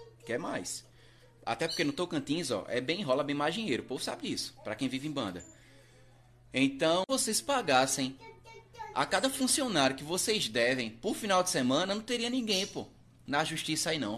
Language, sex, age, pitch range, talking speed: Portuguese, male, 20-39, 130-195 Hz, 180 wpm